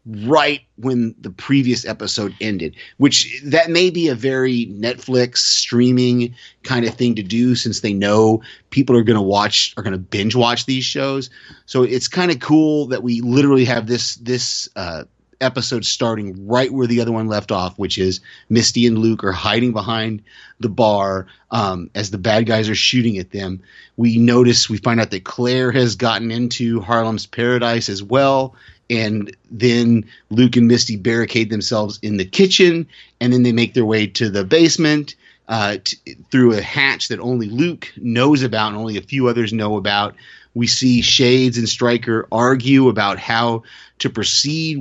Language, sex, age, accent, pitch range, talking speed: English, male, 30-49, American, 110-130 Hz, 180 wpm